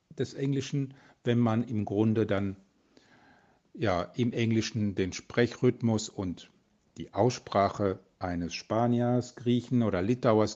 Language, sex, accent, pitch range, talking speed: German, male, German, 100-125 Hz, 115 wpm